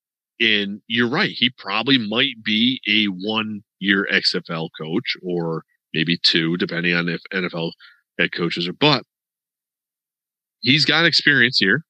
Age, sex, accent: 40-59, male, American